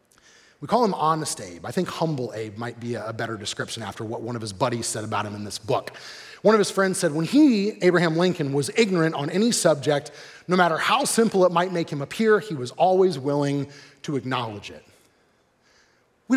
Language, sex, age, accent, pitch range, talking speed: English, male, 30-49, American, 140-195 Hz, 210 wpm